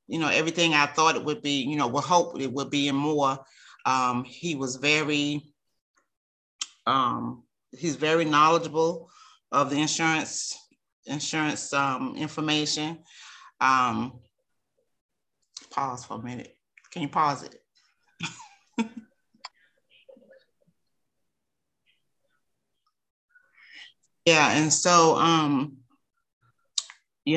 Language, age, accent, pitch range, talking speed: English, 30-49, American, 140-165 Hz, 95 wpm